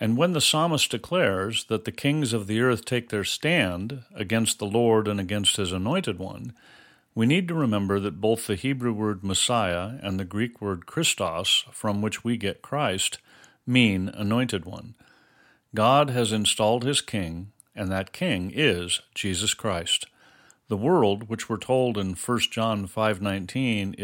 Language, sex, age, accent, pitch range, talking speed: English, male, 40-59, American, 95-125 Hz, 160 wpm